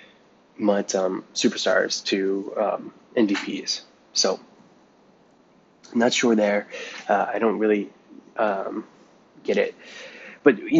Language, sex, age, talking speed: English, male, 20-39, 110 wpm